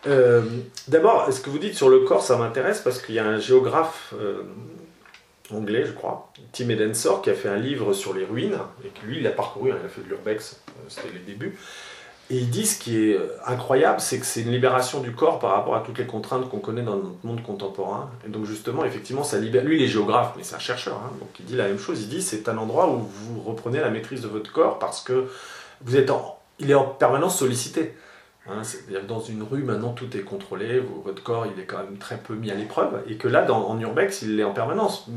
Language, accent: French, French